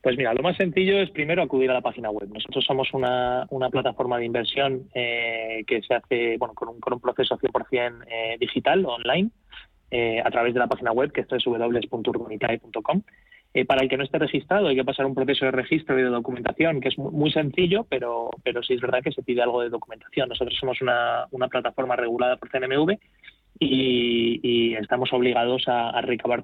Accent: Spanish